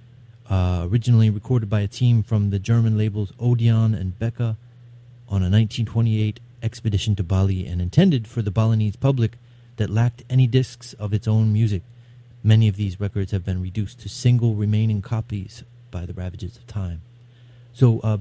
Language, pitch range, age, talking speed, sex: English, 100-120 Hz, 30-49, 170 wpm, male